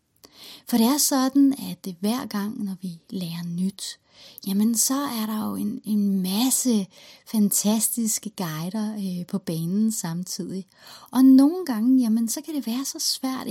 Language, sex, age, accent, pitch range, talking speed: Danish, female, 30-49, native, 200-250 Hz, 150 wpm